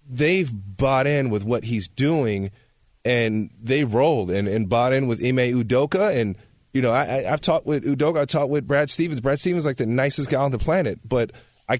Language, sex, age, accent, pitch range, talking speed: English, male, 30-49, American, 125-170 Hz, 220 wpm